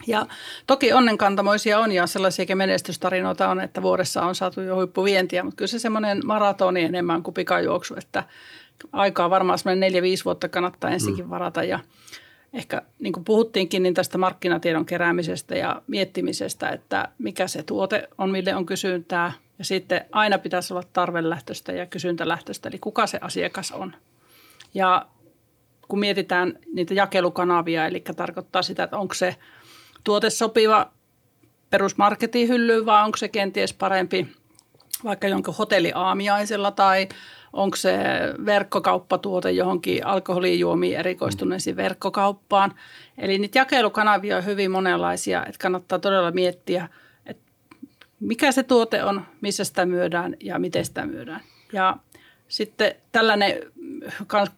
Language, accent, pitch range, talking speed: Finnish, native, 180-210 Hz, 130 wpm